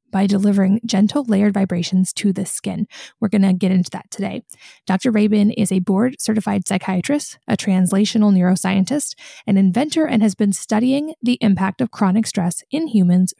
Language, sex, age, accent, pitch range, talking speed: English, female, 20-39, American, 195-230 Hz, 170 wpm